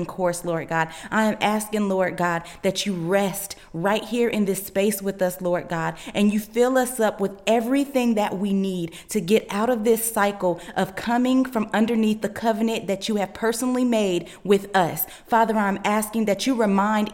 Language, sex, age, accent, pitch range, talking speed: English, female, 30-49, American, 185-225 Hz, 195 wpm